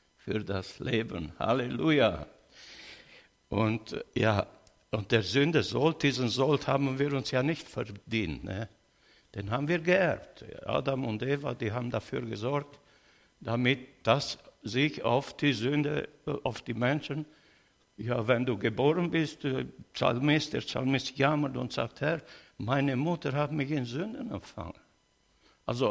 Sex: male